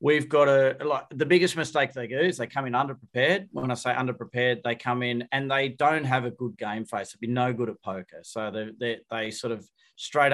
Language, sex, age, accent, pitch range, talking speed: English, male, 40-59, Australian, 110-125 Hz, 245 wpm